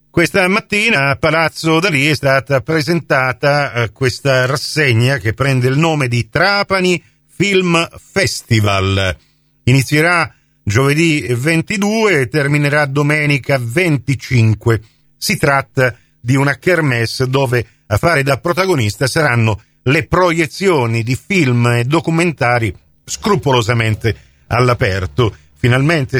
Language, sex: Italian, male